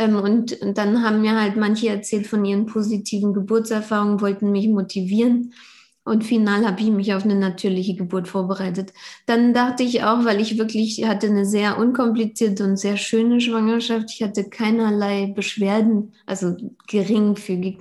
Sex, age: female, 20-39